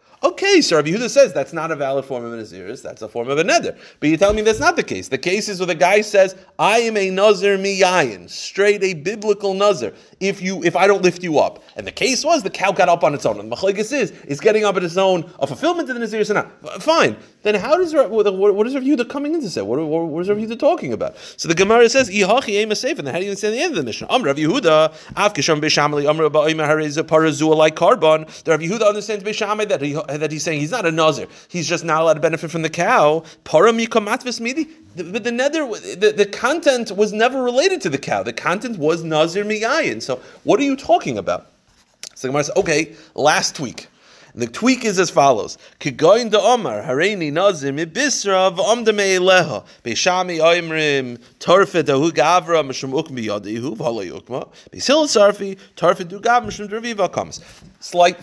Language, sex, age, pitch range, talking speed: English, male, 30-49, 155-215 Hz, 190 wpm